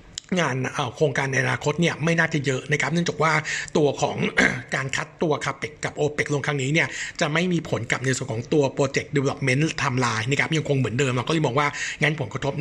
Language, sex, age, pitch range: Thai, male, 60-79, 135-165 Hz